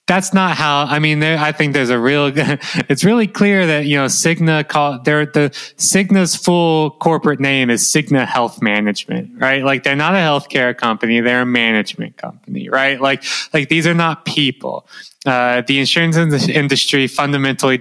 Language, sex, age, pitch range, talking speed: English, male, 20-39, 125-155 Hz, 175 wpm